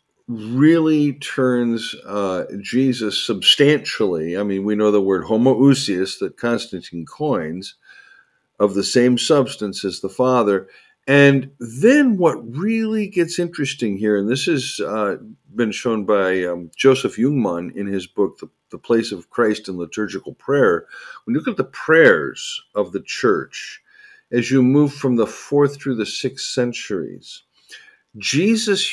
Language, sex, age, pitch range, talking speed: English, male, 50-69, 105-160 Hz, 145 wpm